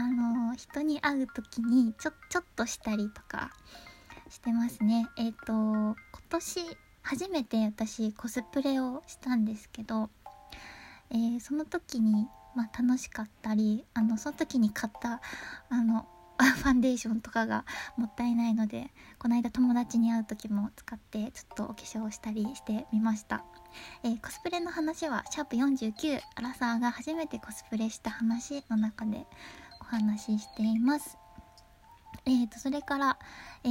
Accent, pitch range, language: native, 225-275 Hz, Japanese